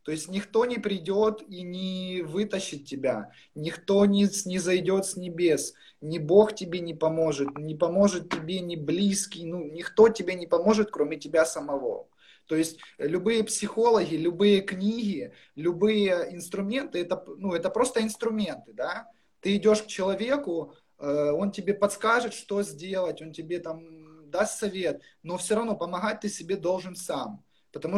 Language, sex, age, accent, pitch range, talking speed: Russian, male, 20-39, native, 160-200 Hz, 150 wpm